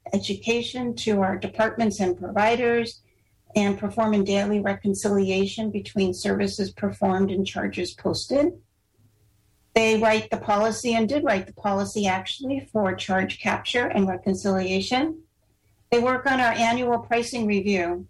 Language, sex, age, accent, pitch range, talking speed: English, female, 60-79, American, 190-220 Hz, 125 wpm